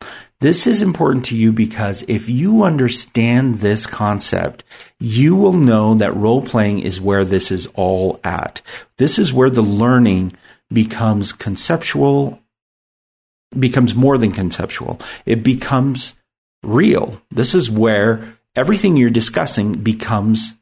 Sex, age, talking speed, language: male, 50-69, 130 wpm, English